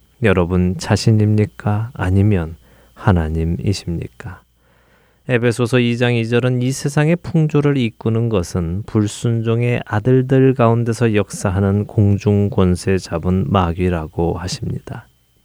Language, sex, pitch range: Korean, male, 90-125 Hz